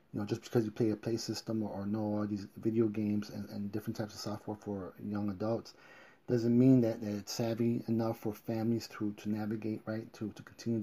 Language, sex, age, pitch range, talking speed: English, male, 30-49, 105-120 Hz, 225 wpm